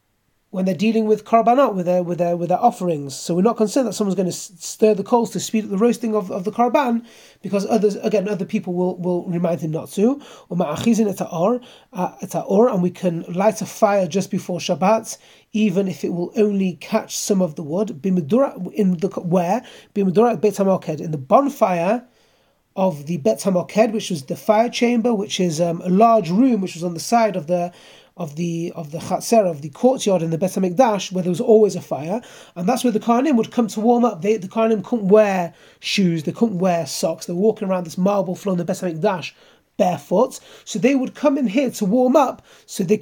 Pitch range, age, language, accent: 175-220 Hz, 30-49, English, British